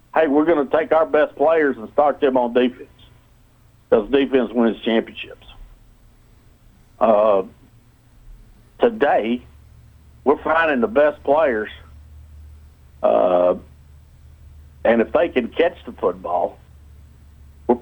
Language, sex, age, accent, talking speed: English, male, 60-79, American, 110 wpm